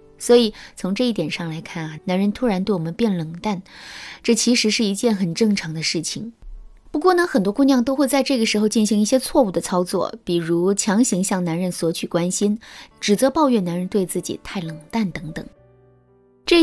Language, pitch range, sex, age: Chinese, 175-235 Hz, female, 20-39